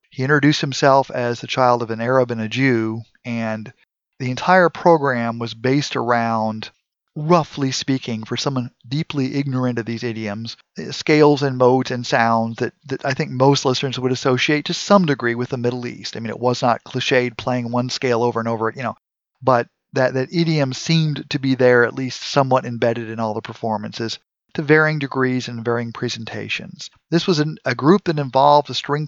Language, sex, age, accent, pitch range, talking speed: English, male, 40-59, American, 120-145 Hz, 190 wpm